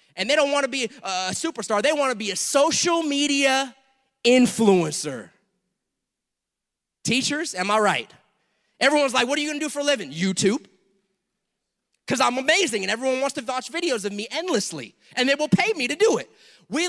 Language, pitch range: English, 170-250 Hz